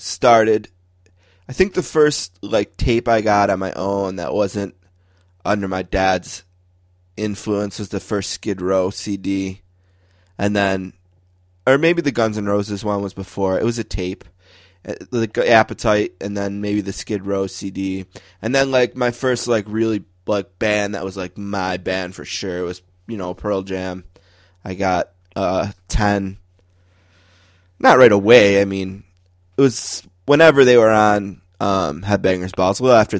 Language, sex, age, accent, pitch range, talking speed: English, male, 20-39, American, 90-115 Hz, 165 wpm